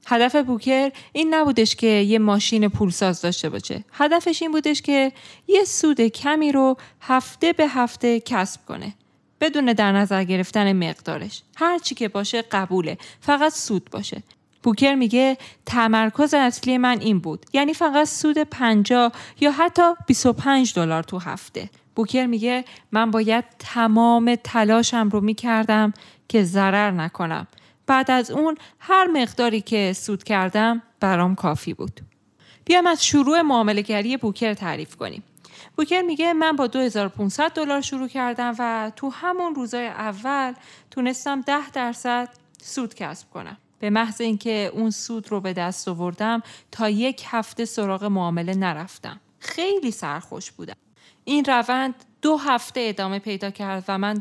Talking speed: 140 wpm